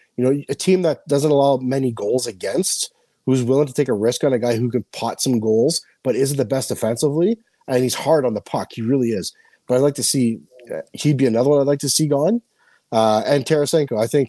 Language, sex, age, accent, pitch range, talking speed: English, male, 30-49, American, 120-145 Hz, 250 wpm